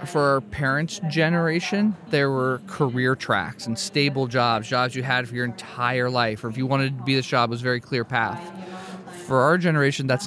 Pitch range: 125-160 Hz